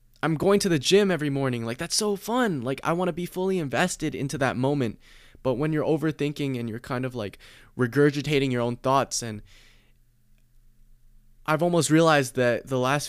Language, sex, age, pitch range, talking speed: English, male, 20-39, 110-140 Hz, 190 wpm